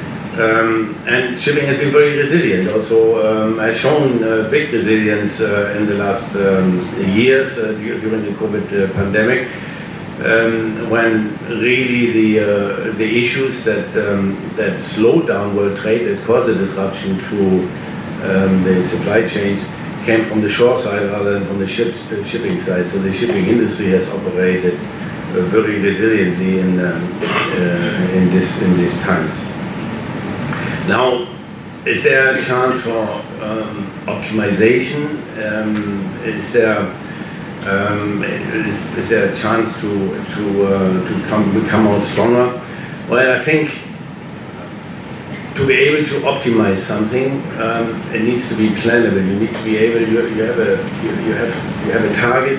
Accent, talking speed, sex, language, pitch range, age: German, 155 wpm, male, English, 100-120 Hz, 50-69